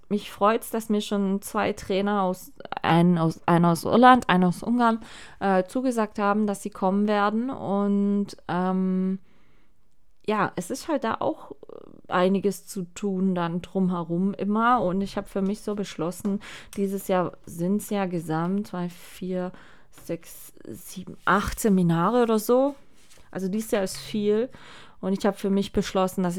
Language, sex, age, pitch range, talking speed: German, female, 20-39, 175-215 Hz, 155 wpm